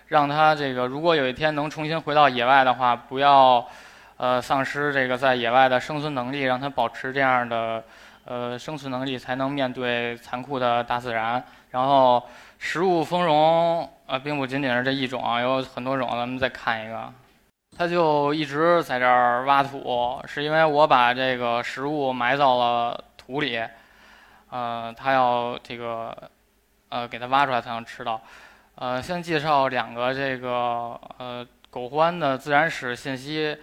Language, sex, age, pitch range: Chinese, male, 20-39, 125-145 Hz